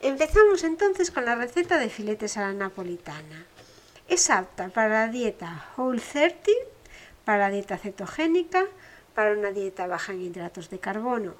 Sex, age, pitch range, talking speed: female, 60-79, 195-310 Hz, 145 wpm